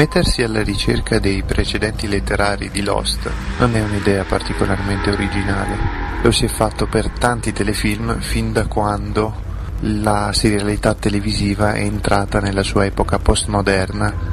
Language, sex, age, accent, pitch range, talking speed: Italian, male, 30-49, native, 100-110 Hz, 135 wpm